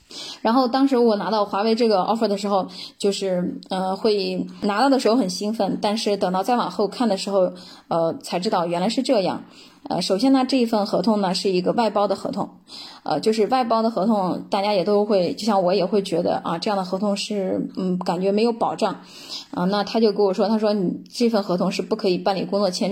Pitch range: 190-225 Hz